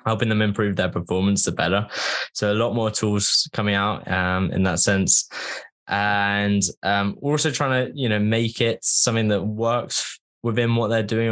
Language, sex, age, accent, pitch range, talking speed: English, male, 10-29, British, 95-110 Hz, 180 wpm